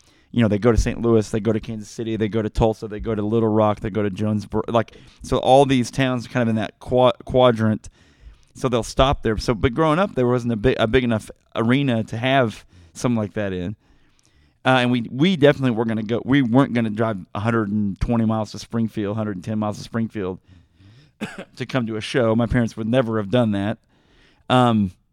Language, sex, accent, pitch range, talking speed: English, male, American, 105-125 Hz, 225 wpm